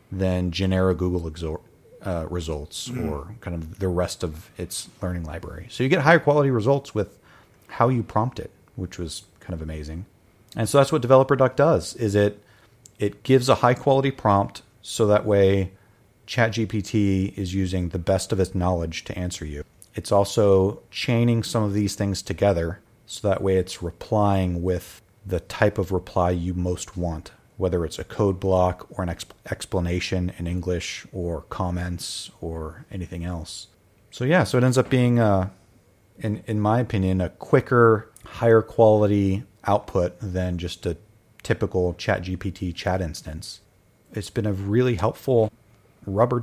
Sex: male